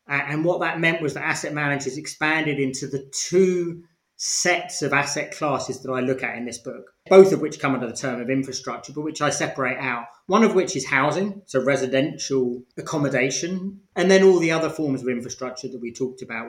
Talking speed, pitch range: 210 wpm, 130-170 Hz